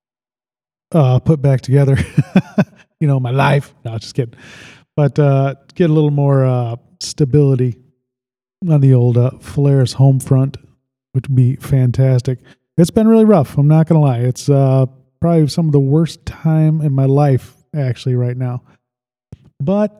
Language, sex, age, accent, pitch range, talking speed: English, male, 20-39, American, 125-150 Hz, 160 wpm